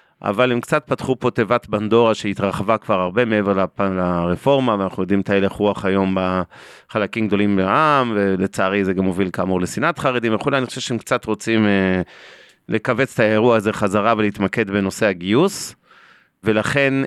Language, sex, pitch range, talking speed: Hebrew, male, 105-135 Hz, 150 wpm